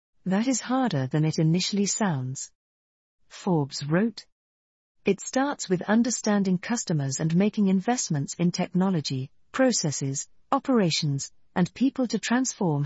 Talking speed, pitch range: 115 wpm, 150-205 Hz